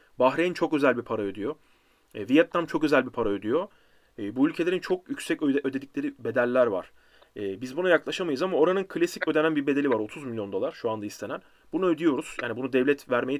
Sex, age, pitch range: male, 30-49, 125-150 Hz